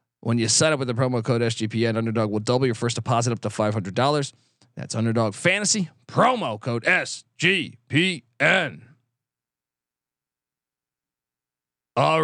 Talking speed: 125 wpm